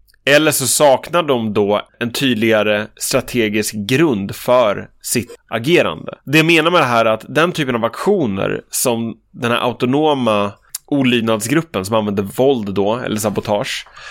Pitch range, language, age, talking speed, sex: 110-140 Hz, English, 20-39, 145 wpm, male